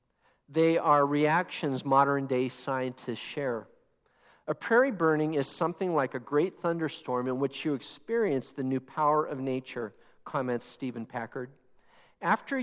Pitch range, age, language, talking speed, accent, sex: 130-150 Hz, 50-69, English, 135 wpm, American, male